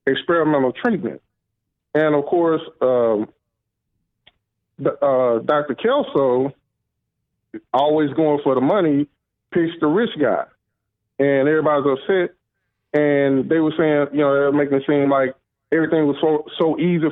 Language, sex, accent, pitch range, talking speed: English, male, American, 130-170 Hz, 135 wpm